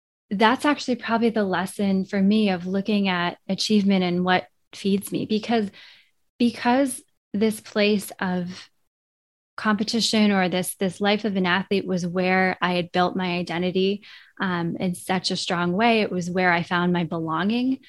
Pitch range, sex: 175-215 Hz, female